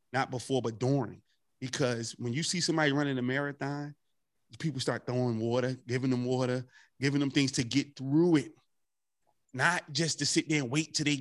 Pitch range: 125-145 Hz